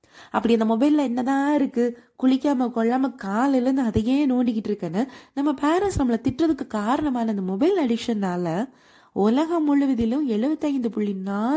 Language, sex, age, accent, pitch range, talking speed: Tamil, female, 20-39, native, 220-280 Hz, 80 wpm